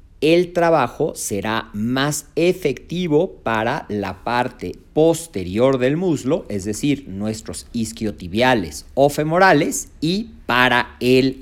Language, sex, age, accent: Spanish, male, 40-59, Mexican